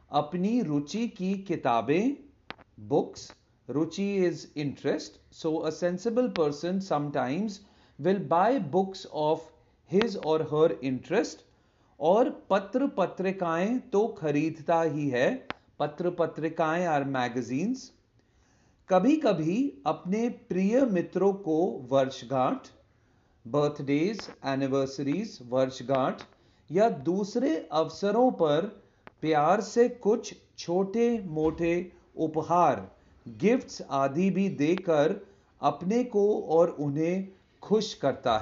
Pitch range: 135-195 Hz